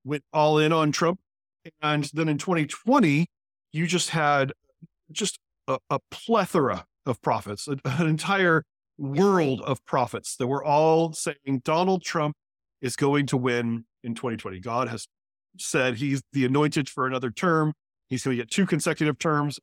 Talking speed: 155 wpm